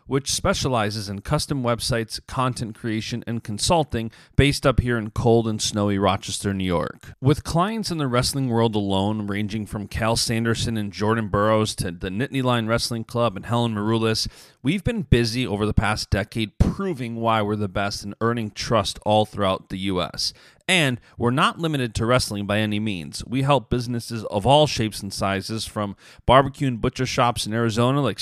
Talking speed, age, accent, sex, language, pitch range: 185 wpm, 40-59, American, male, English, 105-130 Hz